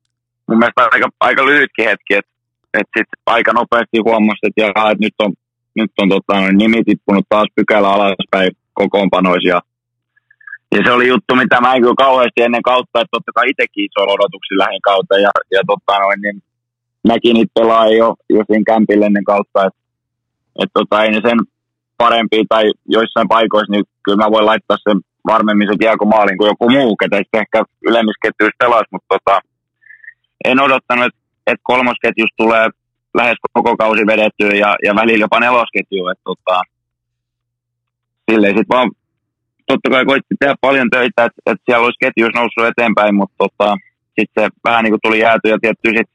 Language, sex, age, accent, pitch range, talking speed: Finnish, male, 20-39, native, 100-120 Hz, 155 wpm